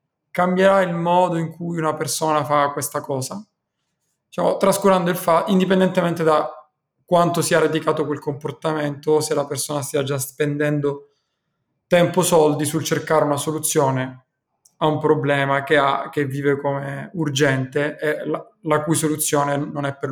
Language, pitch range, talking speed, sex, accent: Italian, 140-165 Hz, 150 wpm, male, native